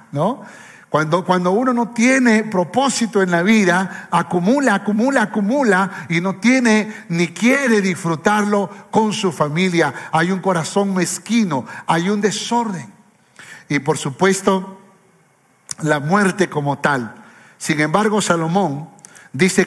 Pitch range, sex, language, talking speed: 180-230 Hz, male, Spanish, 120 wpm